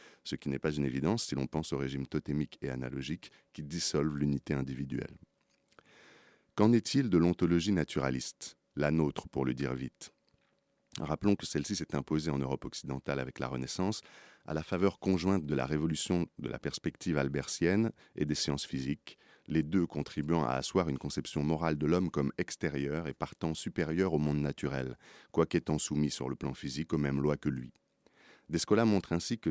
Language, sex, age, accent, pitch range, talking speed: French, male, 40-59, French, 70-85 Hz, 180 wpm